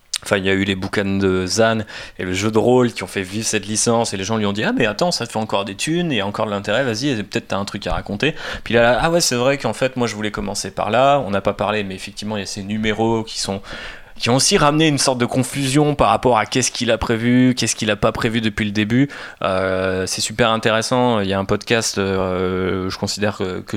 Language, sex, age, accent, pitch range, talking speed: French, male, 20-39, French, 100-115 Hz, 285 wpm